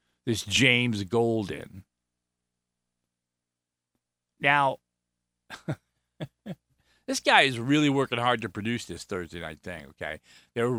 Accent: American